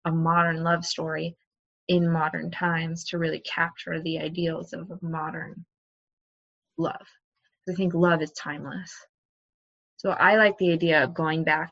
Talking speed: 145 wpm